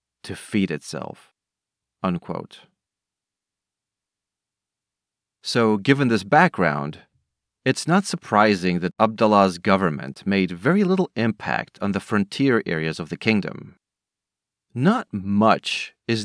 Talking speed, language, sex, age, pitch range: 100 wpm, English, male, 30-49, 95-120 Hz